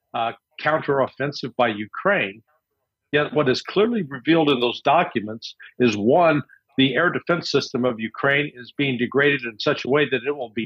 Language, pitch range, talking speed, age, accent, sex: English, 125-155 Hz, 175 wpm, 60-79, American, male